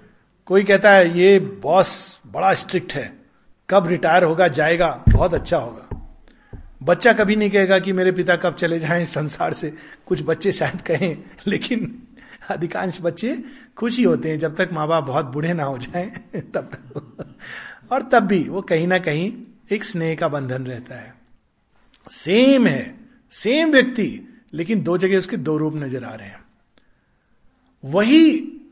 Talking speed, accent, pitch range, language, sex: 165 wpm, native, 175-235 Hz, Hindi, male